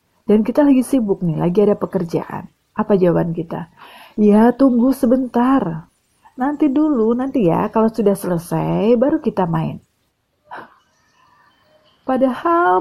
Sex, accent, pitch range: female, native, 180-255 Hz